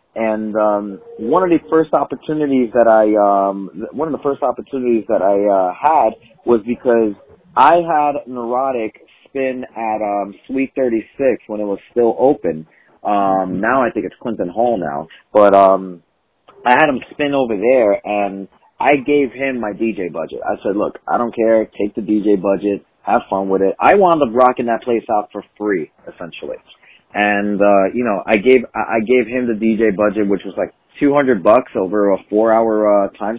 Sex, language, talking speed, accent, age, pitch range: male, English, 185 wpm, American, 30-49, 105-135 Hz